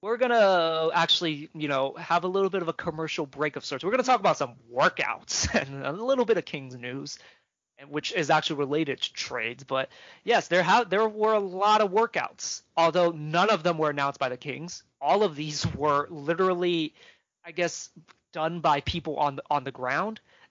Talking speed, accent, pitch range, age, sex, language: 200 wpm, American, 135-165 Hz, 20-39, male, English